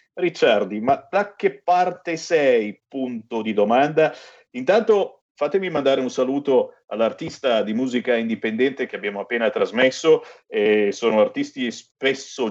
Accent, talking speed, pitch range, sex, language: native, 125 wpm, 115-175 Hz, male, Italian